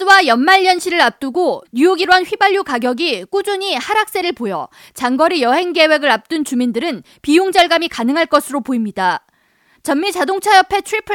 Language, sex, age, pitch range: Korean, female, 20-39, 265-375 Hz